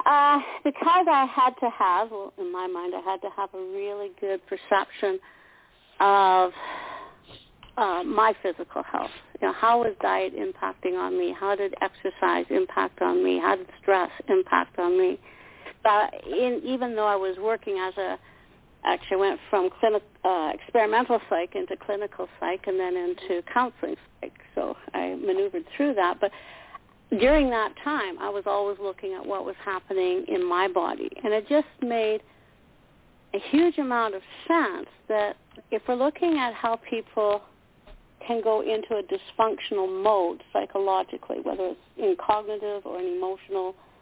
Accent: American